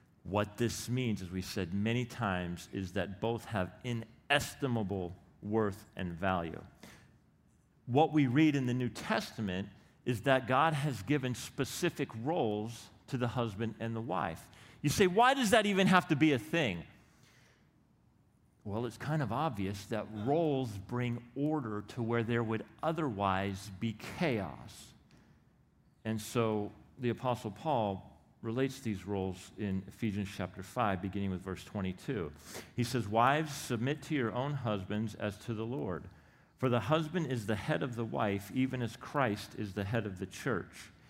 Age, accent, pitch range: 40-59, American, 100-130 Hz